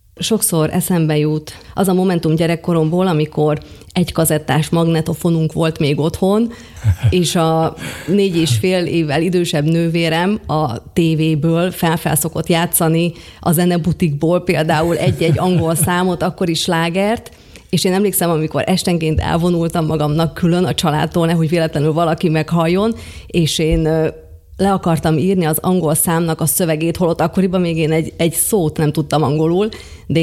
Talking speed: 140 wpm